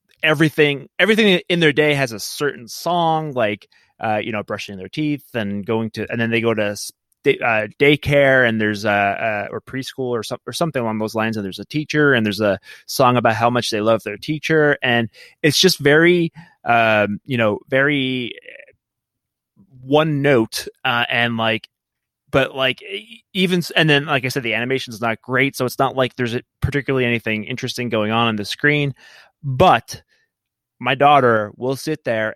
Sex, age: male, 20-39